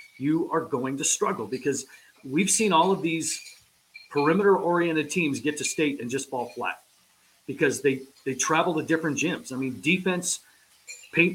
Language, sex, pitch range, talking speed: English, male, 145-175 Hz, 170 wpm